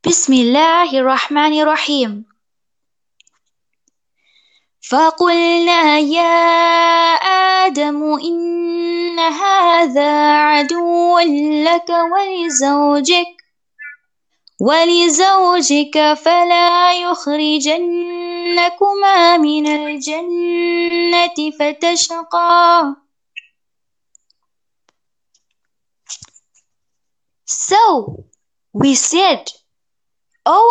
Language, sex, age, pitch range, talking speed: English, female, 20-39, 285-350 Hz, 55 wpm